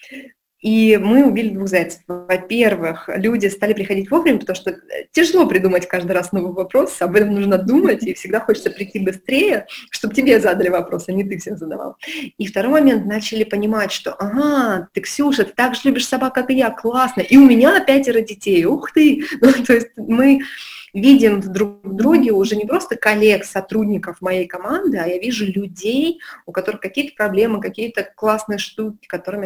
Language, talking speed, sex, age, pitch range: Russian, 175 wpm, female, 20-39, 190-255 Hz